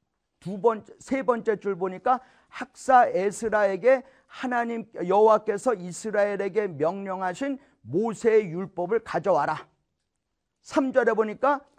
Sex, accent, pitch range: male, native, 215-270 Hz